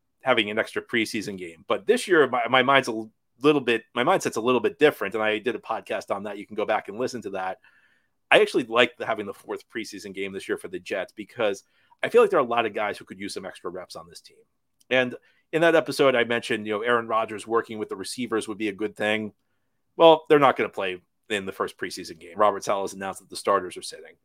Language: English